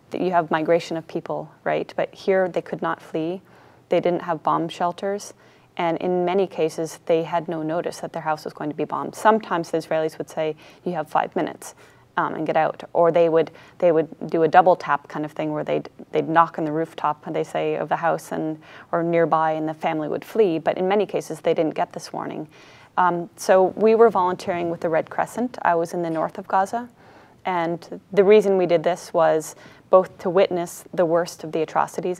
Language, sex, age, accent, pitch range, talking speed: English, female, 20-39, American, 160-185 Hz, 220 wpm